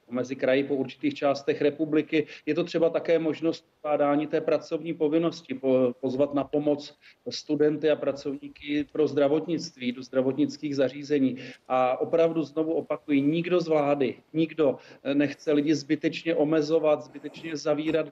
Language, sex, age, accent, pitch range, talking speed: Czech, male, 40-59, native, 140-160 Hz, 135 wpm